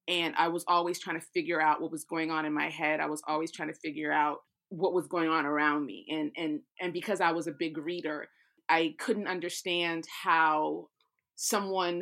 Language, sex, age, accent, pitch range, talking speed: English, female, 30-49, American, 160-180 Hz, 210 wpm